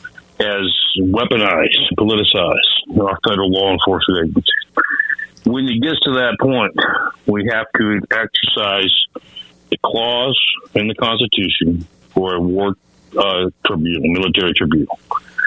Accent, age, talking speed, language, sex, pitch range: American, 50-69, 120 wpm, English, male, 95-120 Hz